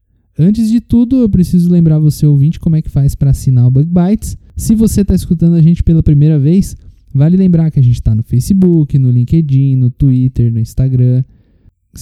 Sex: male